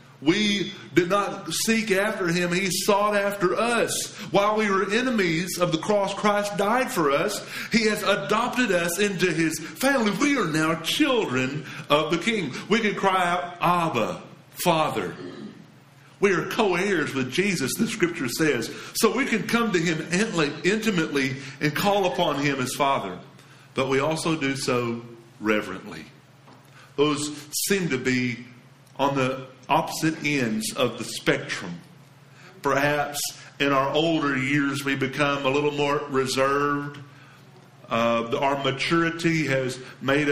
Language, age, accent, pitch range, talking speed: English, 50-69, American, 130-175 Hz, 140 wpm